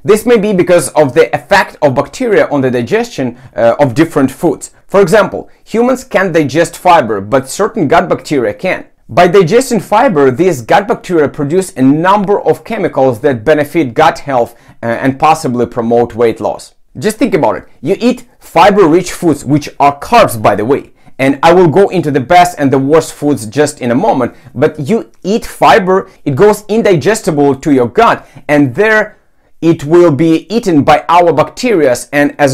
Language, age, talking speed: English, 30-49, 185 wpm